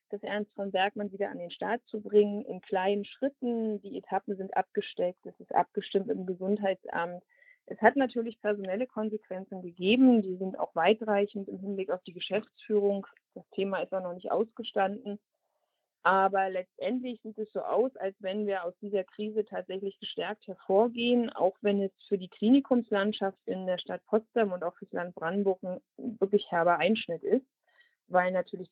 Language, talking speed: German, 170 wpm